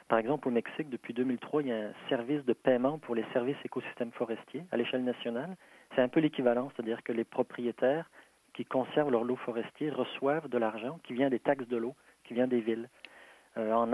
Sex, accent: male, French